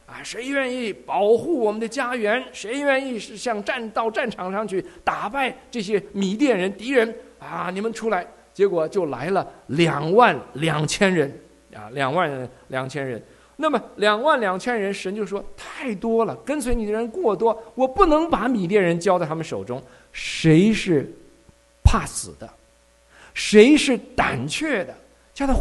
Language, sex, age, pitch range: English, male, 50-69, 160-250 Hz